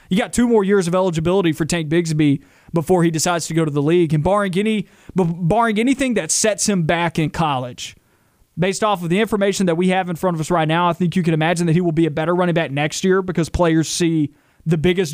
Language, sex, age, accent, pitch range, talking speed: English, male, 30-49, American, 160-200 Hz, 245 wpm